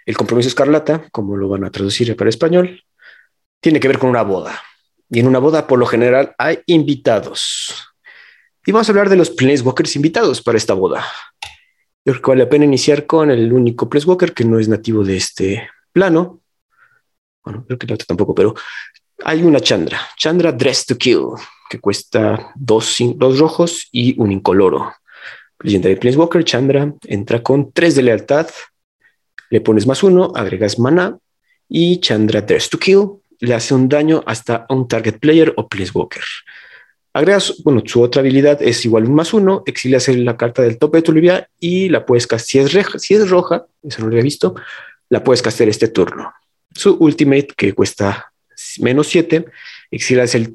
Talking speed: 185 wpm